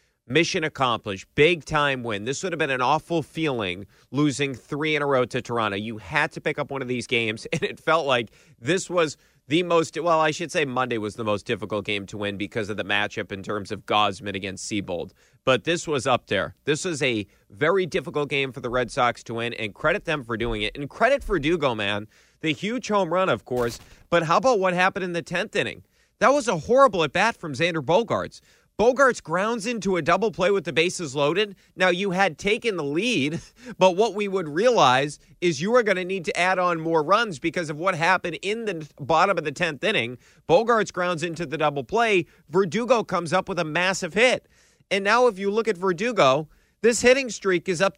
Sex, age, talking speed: male, 30-49, 220 wpm